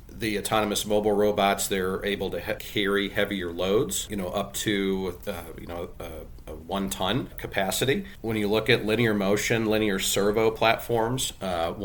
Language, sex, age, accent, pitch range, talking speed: English, male, 40-59, American, 90-105 Hz, 165 wpm